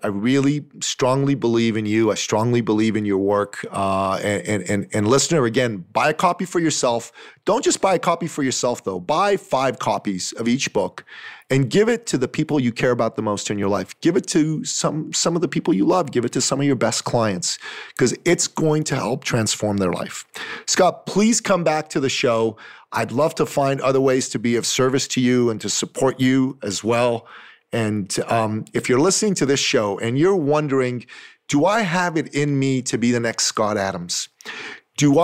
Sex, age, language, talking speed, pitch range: male, 30-49, English, 215 wpm, 115-155 Hz